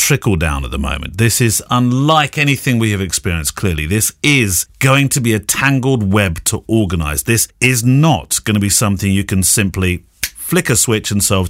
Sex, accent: male, British